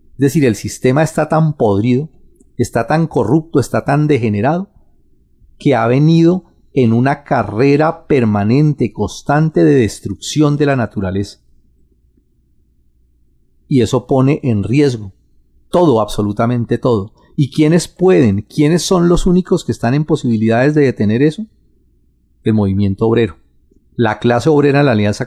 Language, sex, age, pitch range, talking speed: Spanish, male, 40-59, 100-150 Hz, 135 wpm